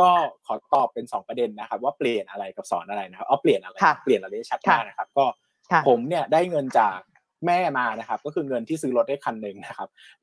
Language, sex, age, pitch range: Thai, male, 20-39, 125-185 Hz